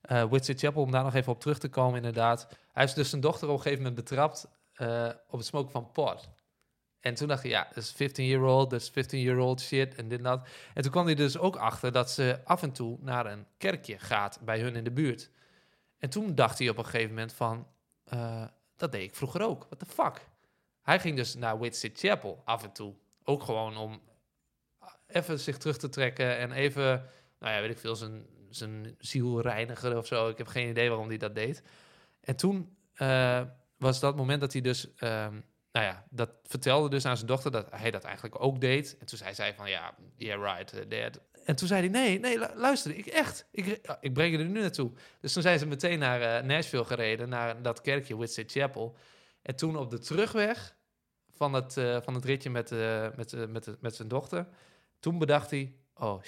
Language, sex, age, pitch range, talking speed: Dutch, male, 20-39, 115-145 Hz, 220 wpm